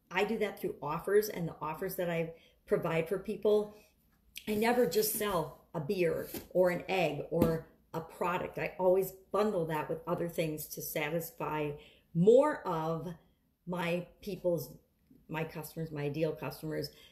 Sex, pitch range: female, 165-205 Hz